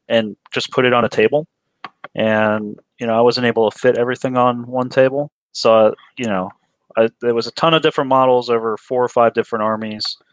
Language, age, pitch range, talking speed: English, 30-49, 105-130 Hz, 215 wpm